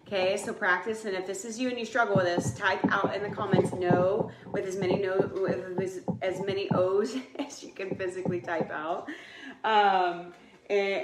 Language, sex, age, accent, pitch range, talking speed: English, female, 30-49, American, 180-210 Hz, 195 wpm